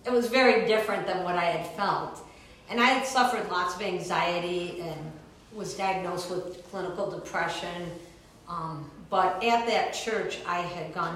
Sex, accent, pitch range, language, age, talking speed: female, American, 170-200 Hz, English, 50-69, 160 wpm